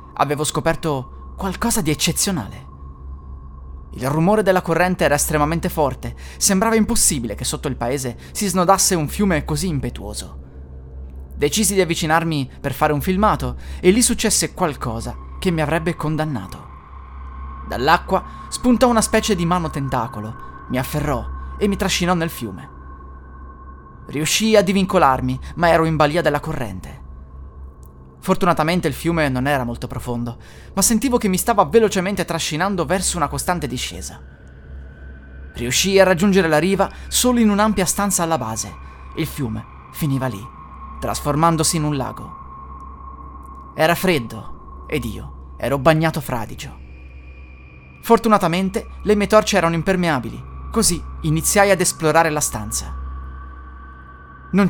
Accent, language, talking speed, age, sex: native, Italian, 130 wpm, 20-39, male